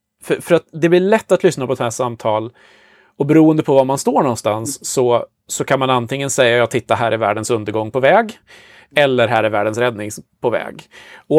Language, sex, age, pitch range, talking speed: Swedish, male, 30-49, 115-155 Hz, 215 wpm